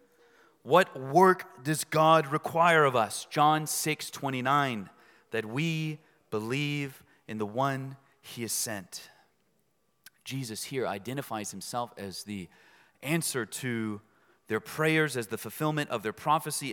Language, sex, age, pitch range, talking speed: English, male, 30-49, 115-165 Hz, 125 wpm